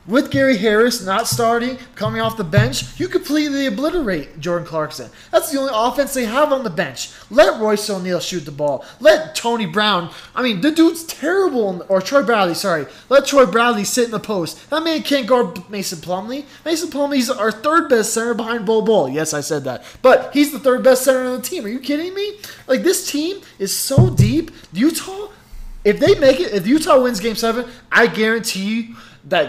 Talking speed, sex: 205 wpm, male